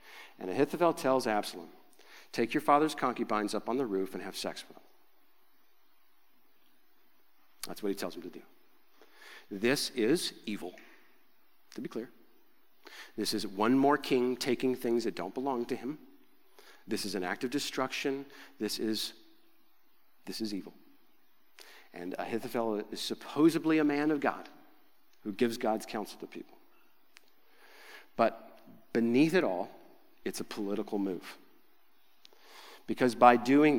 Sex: male